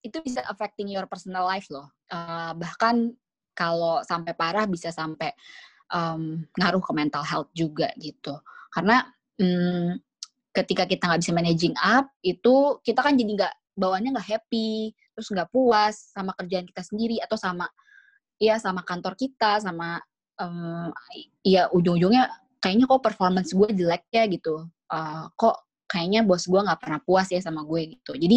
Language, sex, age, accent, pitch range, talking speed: Indonesian, female, 20-39, native, 175-235 Hz, 155 wpm